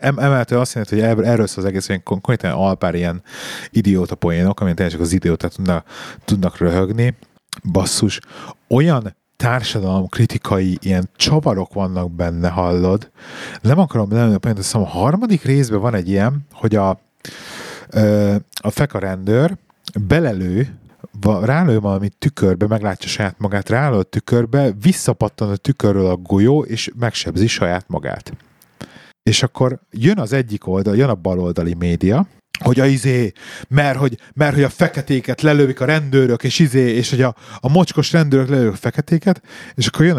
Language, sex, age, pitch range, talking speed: Hungarian, male, 30-49, 100-140 Hz, 140 wpm